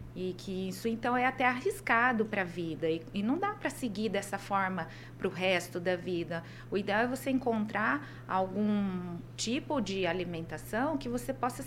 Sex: female